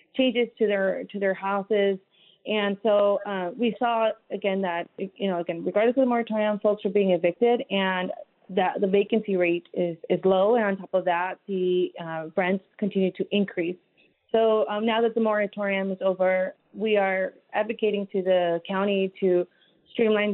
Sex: female